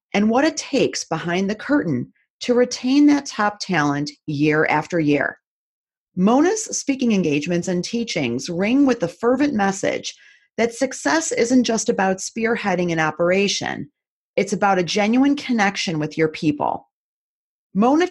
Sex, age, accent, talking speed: female, 40-59, American, 140 wpm